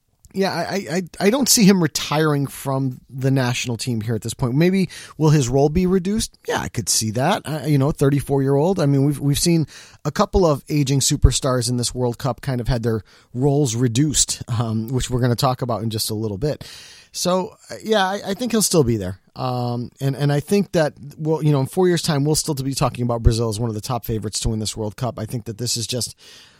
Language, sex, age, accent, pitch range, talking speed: English, male, 30-49, American, 125-165 Hz, 250 wpm